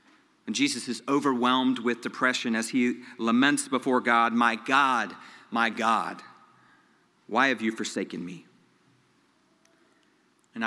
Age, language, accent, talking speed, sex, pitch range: 40-59, English, American, 120 wpm, male, 115-135 Hz